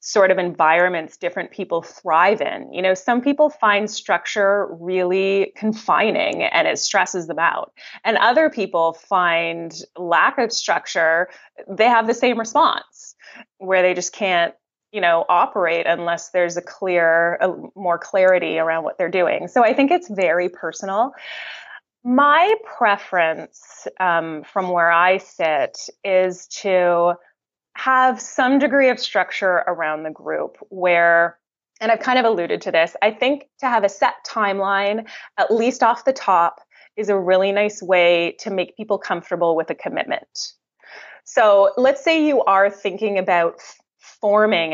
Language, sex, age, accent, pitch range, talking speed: English, female, 20-39, American, 170-225 Hz, 150 wpm